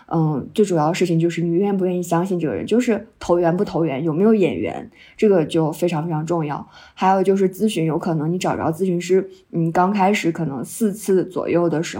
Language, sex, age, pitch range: Chinese, female, 20-39, 170-210 Hz